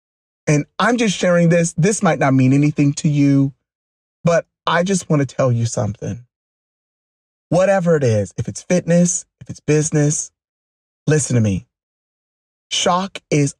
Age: 30-49